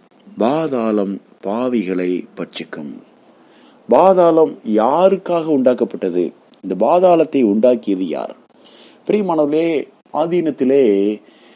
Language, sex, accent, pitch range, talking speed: Tamil, male, native, 105-155 Hz, 55 wpm